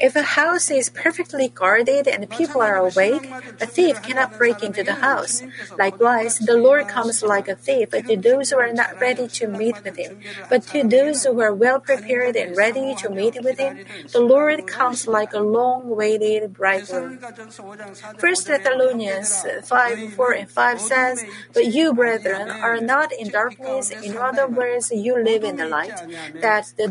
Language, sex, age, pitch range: Korean, female, 40-59, 205-255 Hz